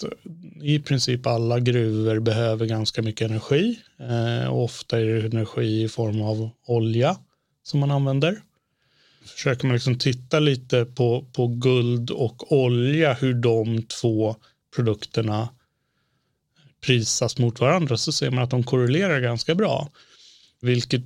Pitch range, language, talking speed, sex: 115-140 Hz, Swedish, 130 wpm, male